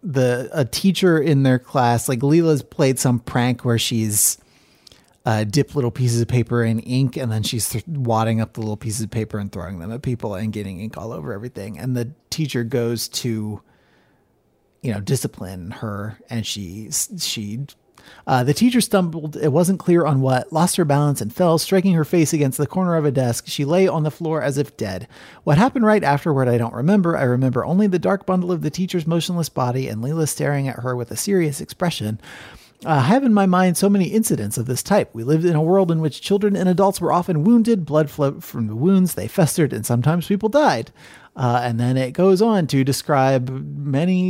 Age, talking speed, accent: 30-49, 215 wpm, American